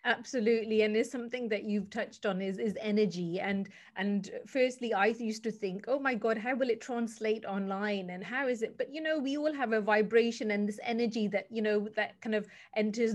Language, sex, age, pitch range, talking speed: English, female, 30-49, 200-235 Hz, 220 wpm